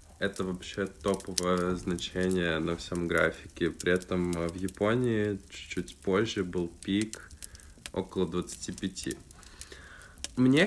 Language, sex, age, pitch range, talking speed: Russian, male, 20-39, 85-105 Hz, 100 wpm